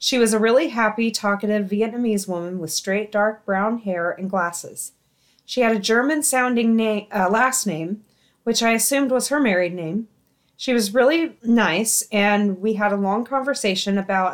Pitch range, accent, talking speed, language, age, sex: 180-230 Hz, American, 165 wpm, English, 30-49, female